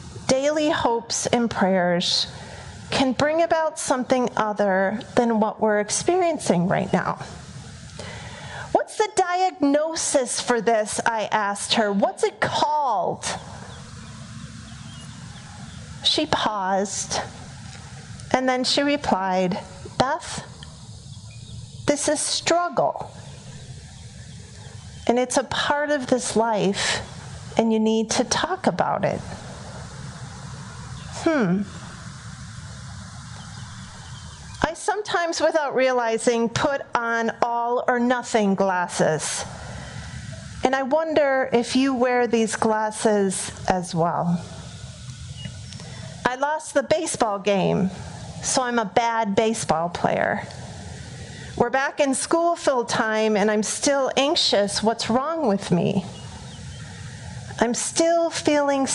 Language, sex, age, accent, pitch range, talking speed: English, female, 40-59, American, 205-290 Hz, 100 wpm